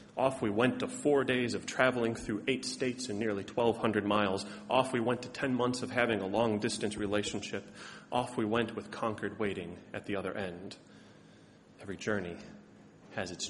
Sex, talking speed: male, 180 wpm